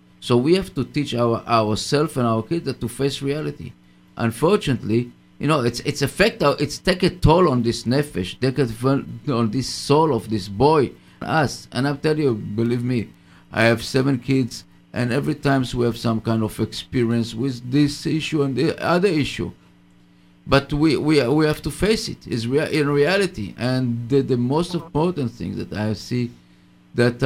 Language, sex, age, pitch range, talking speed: English, male, 50-69, 105-140 Hz, 185 wpm